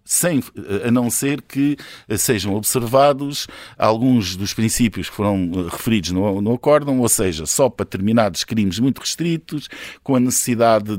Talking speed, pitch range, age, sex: 145 wpm, 100-130 Hz, 50-69, male